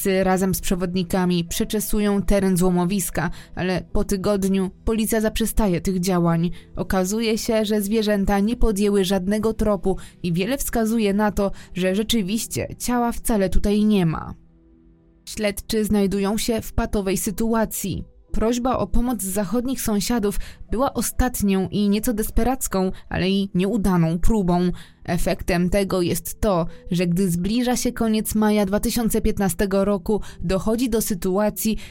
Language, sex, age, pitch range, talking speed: Polish, female, 20-39, 175-215 Hz, 130 wpm